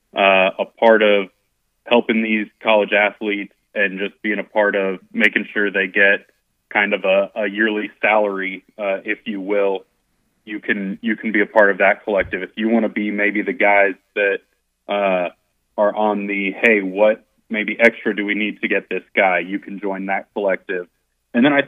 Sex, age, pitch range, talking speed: male, 30-49, 100-115 Hz, 195 wpm